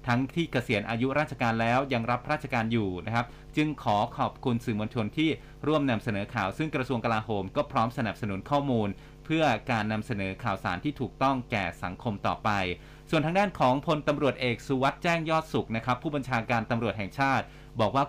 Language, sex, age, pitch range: Thai, male, 30-49, 115-145 Hz